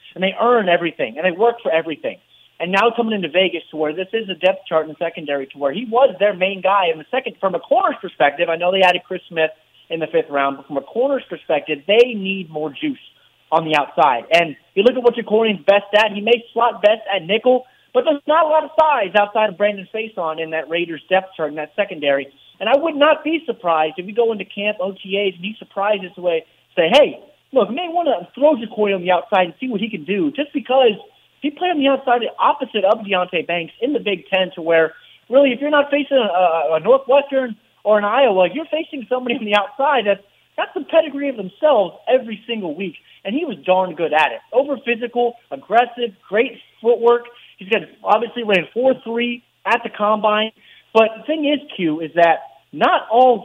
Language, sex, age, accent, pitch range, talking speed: English, male, 30-49, American, 180-255 Hz, 225 wpm